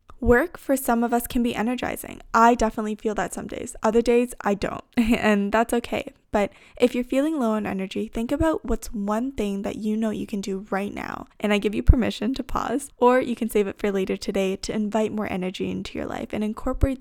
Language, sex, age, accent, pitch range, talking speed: English, female, 10-29, American, 200-245 Hz, 230 wpm